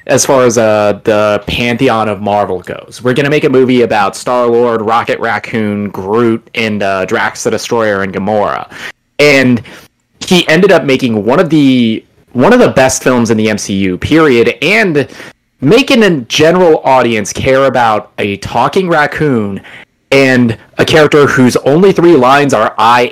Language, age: English, 30-49